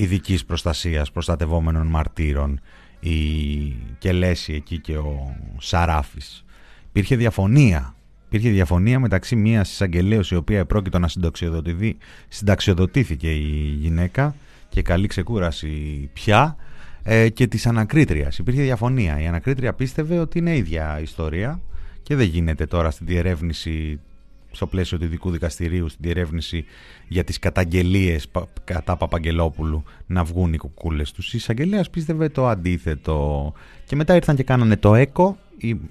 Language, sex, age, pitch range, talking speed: Greek, male, 30-49, 80-115 Hz, 125 wpm